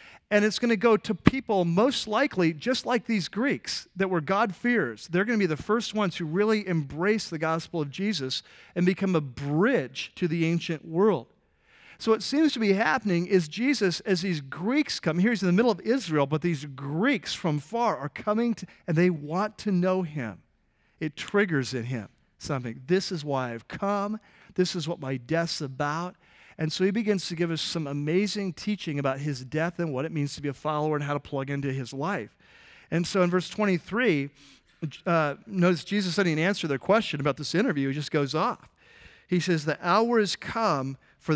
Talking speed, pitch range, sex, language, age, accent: 205 wpm, 145-200 Hz, male, English, 40-59, American